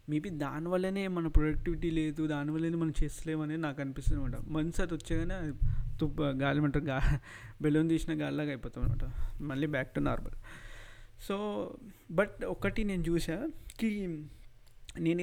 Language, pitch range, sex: Telugu, 135-165 Hz, male